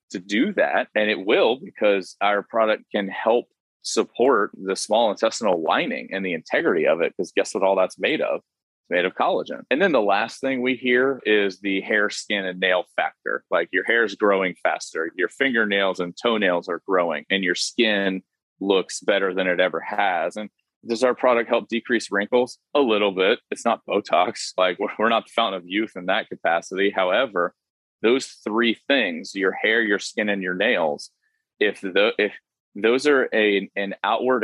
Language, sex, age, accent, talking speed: English, male, 30-49, American, 190 wpm